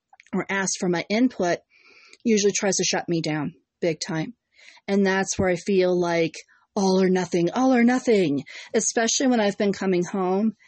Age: 40-59